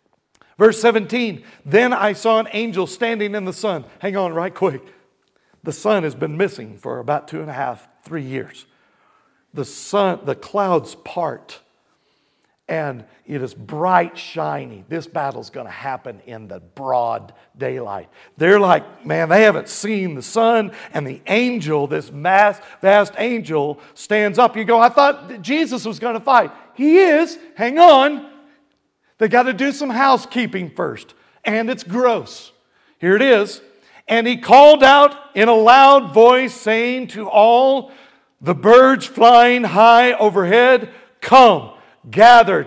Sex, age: male, 50-69